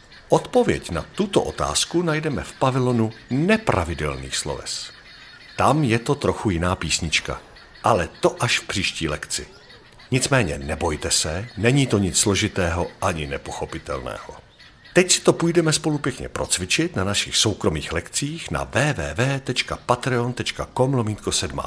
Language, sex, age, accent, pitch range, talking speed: Czech, male, 50-69, native, 95-140 Hz, 120 wpm